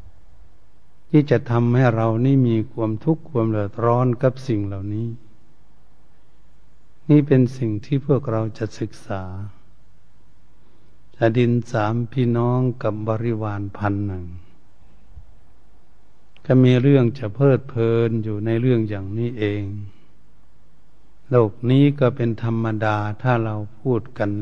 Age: 70-89